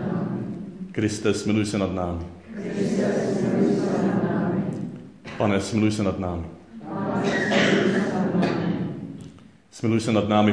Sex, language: male, Czech